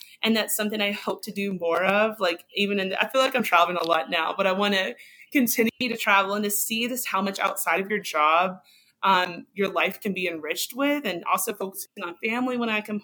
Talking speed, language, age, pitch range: 240 wpm, English, 20-39, 190-240 Hz